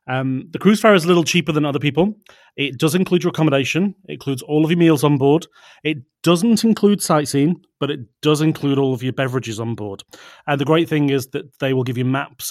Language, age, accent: English, 30-49, British